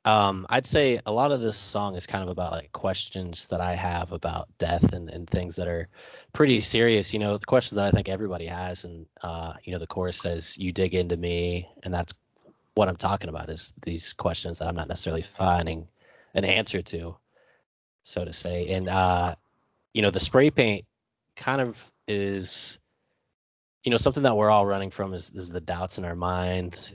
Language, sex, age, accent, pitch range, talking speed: English, male, 20-39, American, 85-100 Hz, 205 wpm